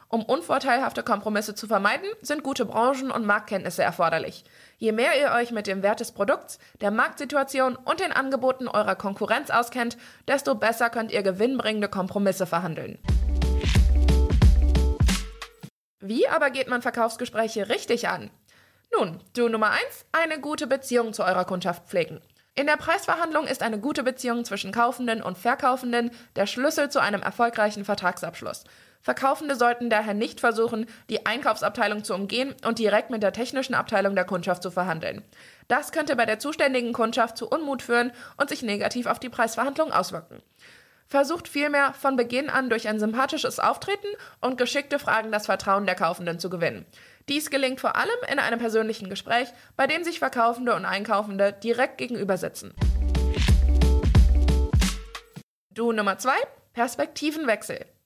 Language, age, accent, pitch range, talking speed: German, 20-39, German, 205-270 Hz, 150 wpm